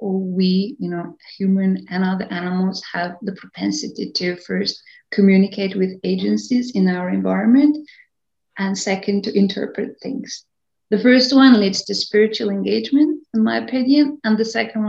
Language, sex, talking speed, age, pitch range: English, female, 150 wpm, 30-49, 185-225 Hz